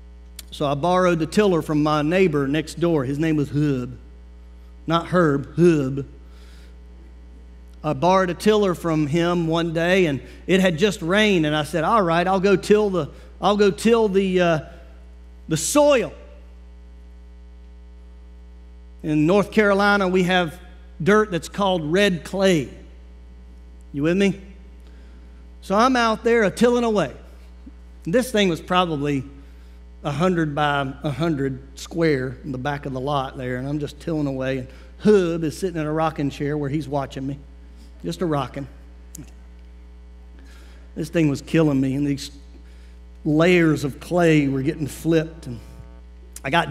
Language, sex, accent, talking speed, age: English, male, American, 150 wpm, 50-69